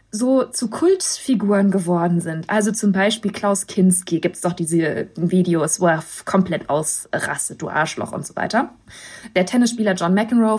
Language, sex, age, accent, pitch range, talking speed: German, female, 20-39, German, 205-250 Hz, 160 wpm